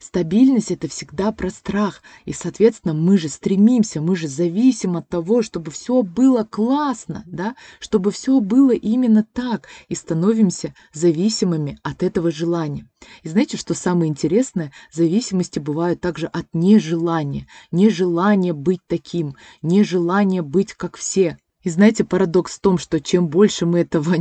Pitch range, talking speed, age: 170-220 Hz, 140 wpm, 20-39